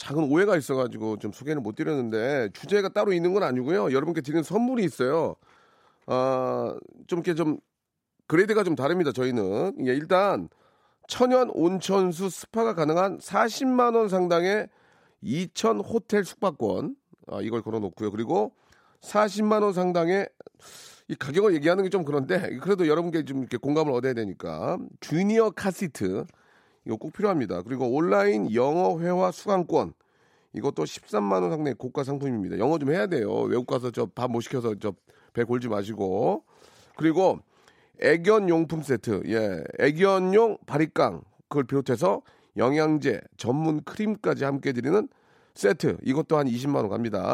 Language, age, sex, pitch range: Korean, 40-59, male, 130-200 Hz